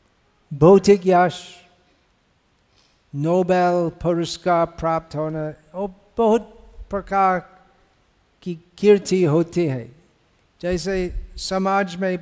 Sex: male